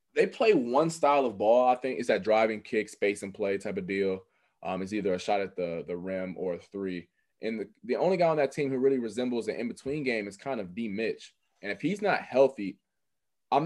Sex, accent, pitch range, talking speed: male, American, 95-130 Hz, 235 wpm